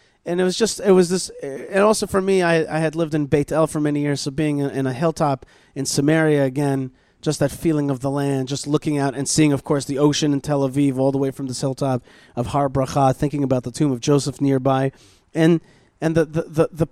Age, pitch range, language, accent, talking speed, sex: 30-49, 140-175 Hz, English, American, 240 wpm, male